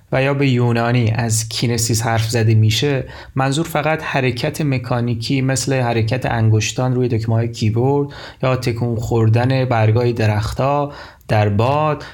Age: 30-49